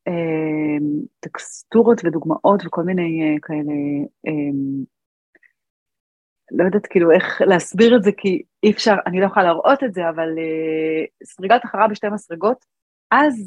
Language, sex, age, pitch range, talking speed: Hebrew, female, 30-49, 160-220 Hz, 135 wpm